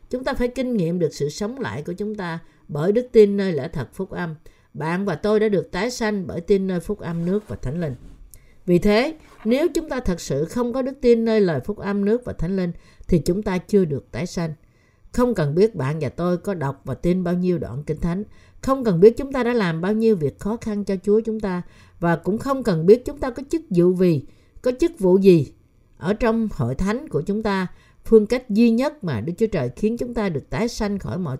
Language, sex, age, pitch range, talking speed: Vietnamese, female, 50-69, 165-220 Hz, 250 wpm